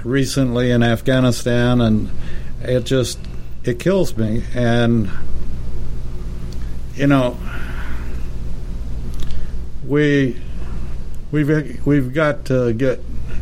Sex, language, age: male, English, 60-79